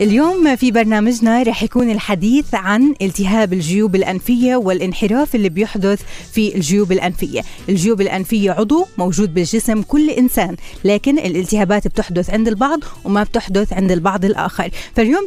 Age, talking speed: 30-49, 135 wpm